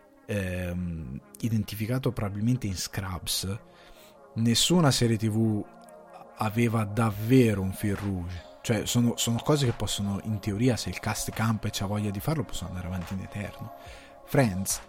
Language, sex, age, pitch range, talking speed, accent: Italian, male, 20-39, 100-120 Hz, 135 wpm, native